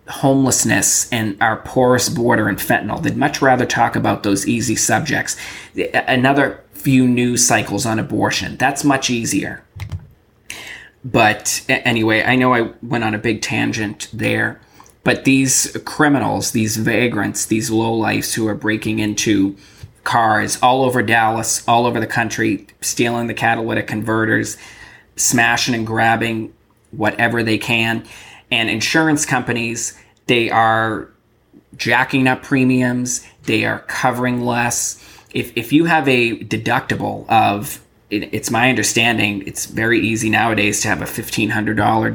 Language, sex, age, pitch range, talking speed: English, male, 20-39, 110-125 Hz, 135 wpm